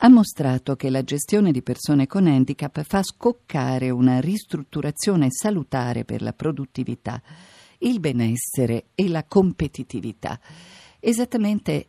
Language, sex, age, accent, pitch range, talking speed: Italian, female, 50-69, native, 125-170 Hz, 115 wpm